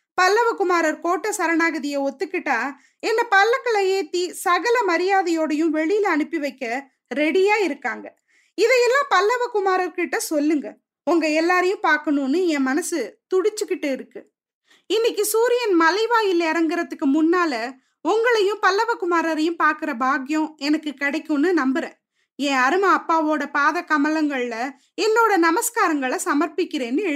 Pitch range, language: 300-395 Hz, Tamil